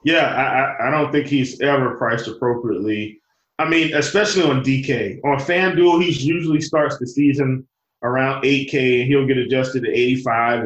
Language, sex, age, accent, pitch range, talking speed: English, male, 20-39, American, 125-150 Hz, 165 wpm